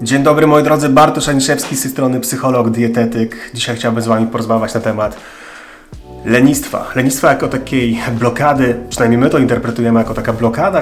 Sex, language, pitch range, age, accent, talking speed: male, Polish, 115-135 Hz, 30-49, native, 165 wpm